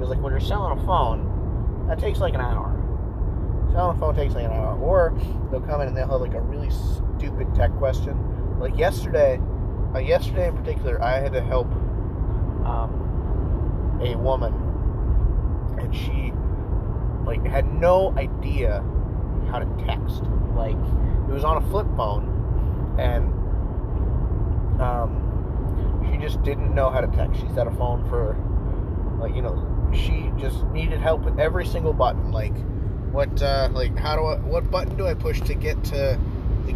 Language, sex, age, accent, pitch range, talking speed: English, male, 30-49, American, 90-110 Hz, 165 wpm